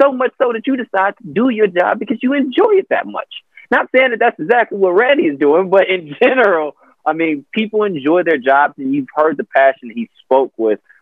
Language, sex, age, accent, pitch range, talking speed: English, male, 20-39, American, 135-220 Hz, 235 wpm